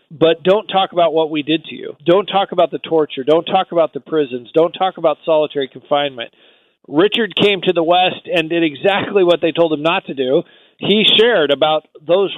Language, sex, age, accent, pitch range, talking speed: English, male, 50-69, American, 155-195 Hz, 210 wpm